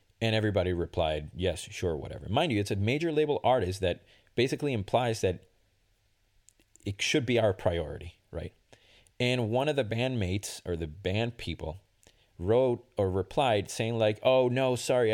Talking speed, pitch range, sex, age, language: 160 wpm, 90-115 Hz, male, 30-49, English